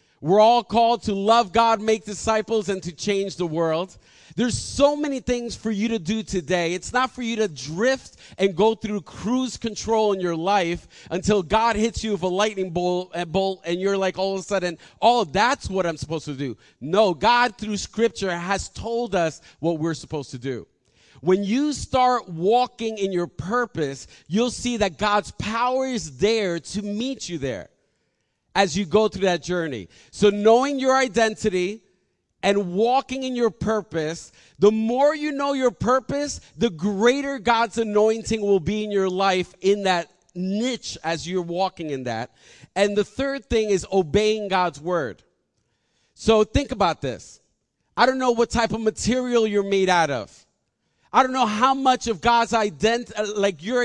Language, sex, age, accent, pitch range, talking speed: English, male, 40-59, American, 180-230 Hz, 175 wpm